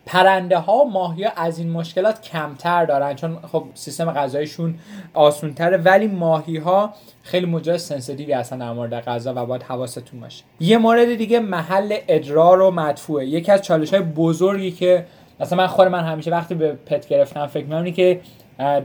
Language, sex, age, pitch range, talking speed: Persian, male, 20-39, 145-180 Hz, 170 wpm